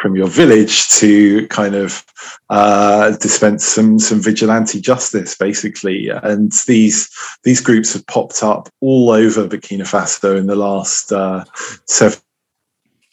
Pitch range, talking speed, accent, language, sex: 95-110 Hz, 135 wpm, British, English, male